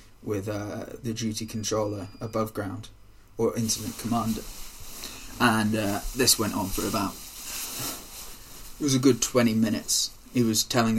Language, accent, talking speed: English, British, 140 wpm